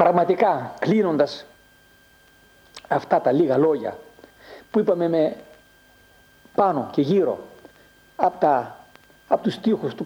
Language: Greek